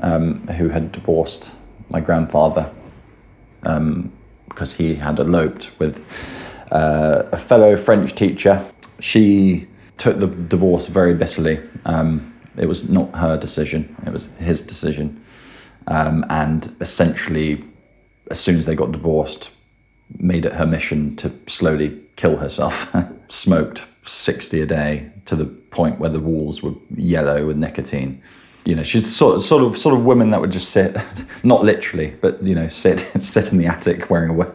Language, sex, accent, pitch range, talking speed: English, male, British, 75-90 Hz, 155 wpm